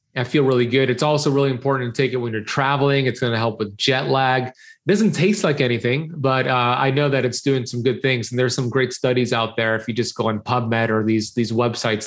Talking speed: 265 wpm